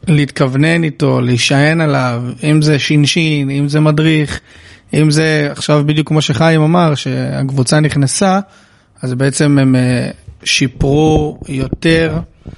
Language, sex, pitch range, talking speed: Hebrew, male, 135-175 Hz, 115 wpm